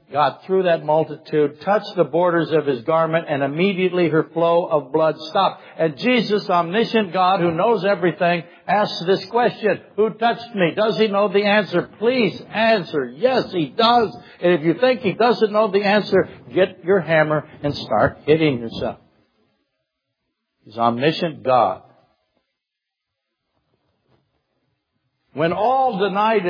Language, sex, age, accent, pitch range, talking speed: English, male, 60-79, American, 150-205 Hz, 140 wpm